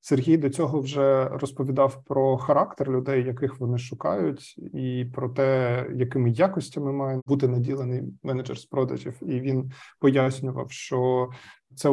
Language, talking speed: Ukrainian, 135 wpm